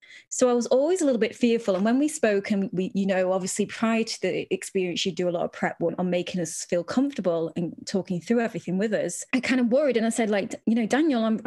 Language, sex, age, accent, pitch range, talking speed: English, female, 20-39, British, 195-255 Hz, 260 wpm